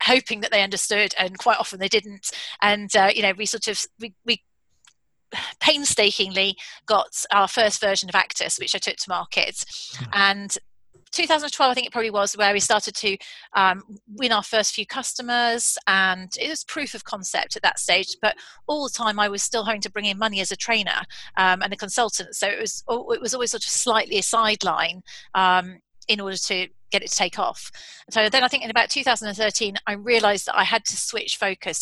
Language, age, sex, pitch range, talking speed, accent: English, 30-49, female, 195-225 Hz, 205 wpm, British